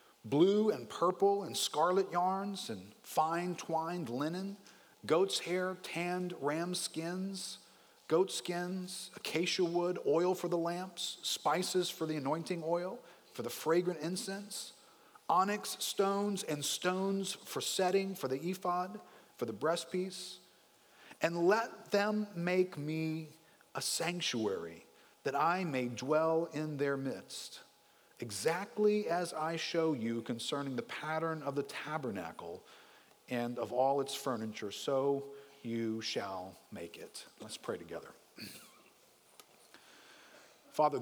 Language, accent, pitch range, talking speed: English, American, 125-180 Hz, 120 wpm